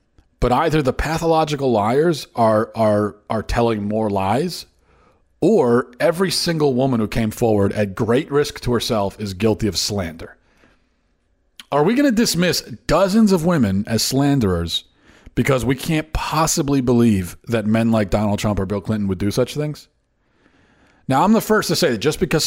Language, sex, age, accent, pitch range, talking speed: English, male, 40-59, American, 110-145 Hz, 170 wpm